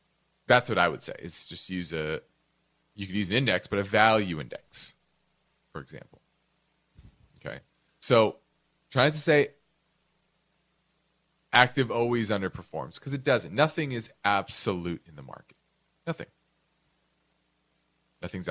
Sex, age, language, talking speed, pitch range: male, 30-49, English, 125 wpm, 95-155 Hz